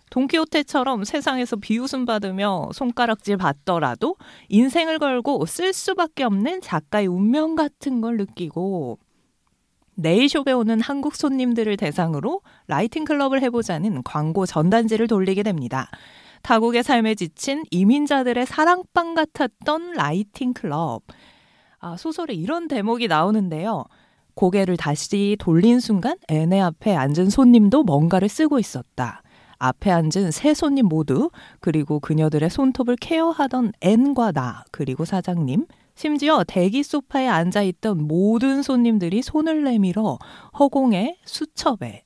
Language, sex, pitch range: Korean, female, 175-270 Hz